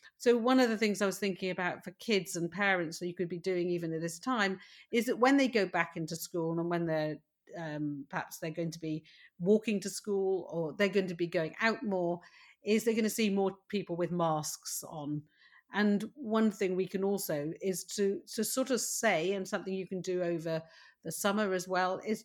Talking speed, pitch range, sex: 225 wpm, 175-230 Hz, female